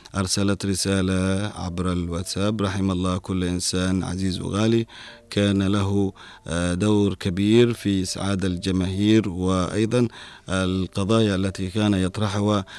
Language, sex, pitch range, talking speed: Arabic, male, 95-105 Hz, 105 wpm